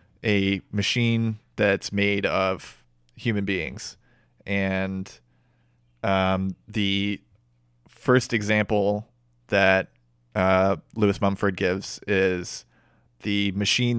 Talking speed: 85 wpm